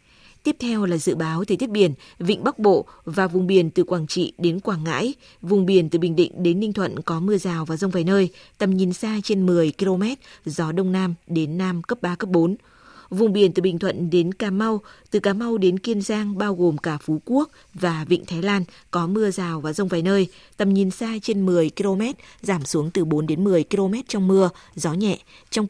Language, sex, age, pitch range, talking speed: Vietnamese, female, 20-39, 170-205 Hz, 230 wpm